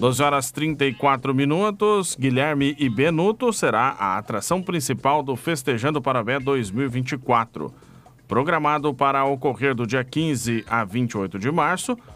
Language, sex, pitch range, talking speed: Portuguese, male, 125-165 Hz, 125 wpm